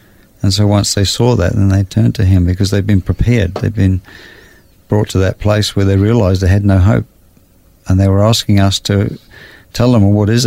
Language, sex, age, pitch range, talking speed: English, male, 50-69, 95-110 Hz, 225 wpm